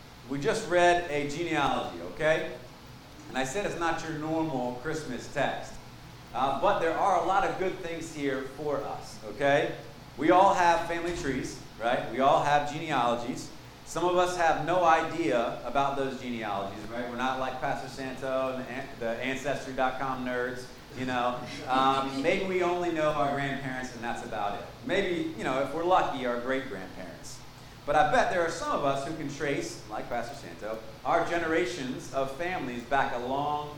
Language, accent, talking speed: English, American, 180 wpm